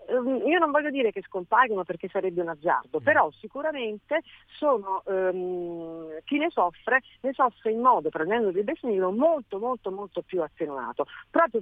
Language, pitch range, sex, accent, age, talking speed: Italian, 165-255 Hz, female, native, 40-59, 155 wpm